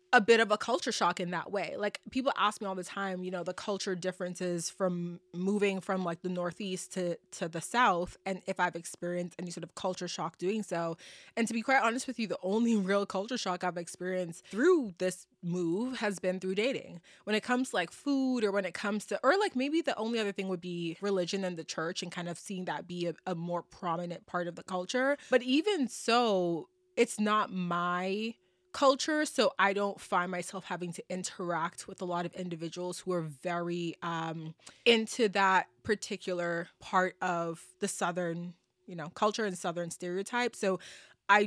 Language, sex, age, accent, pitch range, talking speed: English, female, 20-39, American, 175-215 Hz, 205 wpm